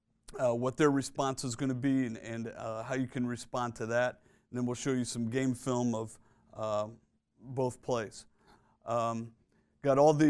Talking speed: 190 wpm